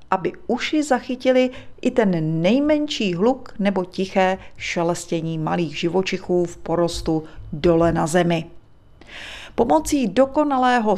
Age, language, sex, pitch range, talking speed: 40-59, Czech, female, 175-235 Hz, 105 wpm